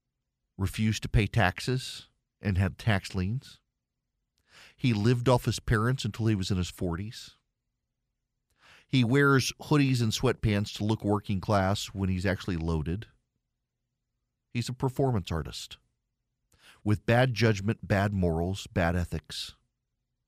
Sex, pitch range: male, 100-130 Hz